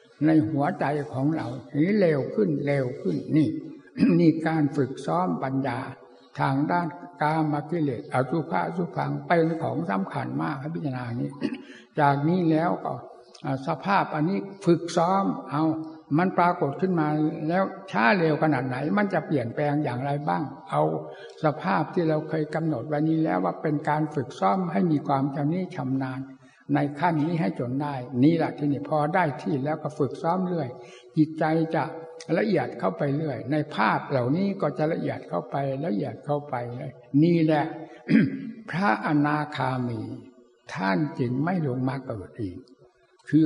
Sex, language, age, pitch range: male, Thai, 60-79, 135-160 Hz